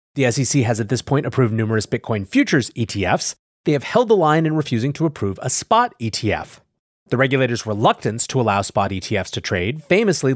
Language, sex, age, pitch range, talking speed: English, male, 30-49, 115-165 Hz, 190 wpm